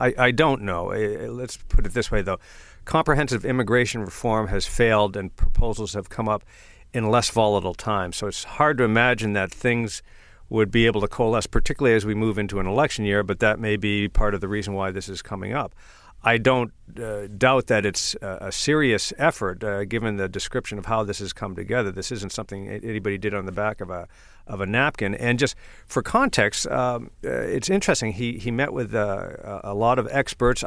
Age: 50-69